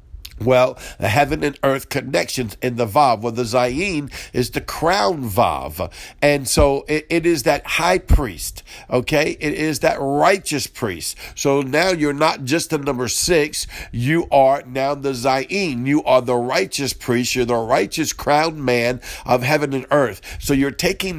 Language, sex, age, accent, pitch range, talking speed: English, male, 50-69, American, 120-150 Hz, 170 wpm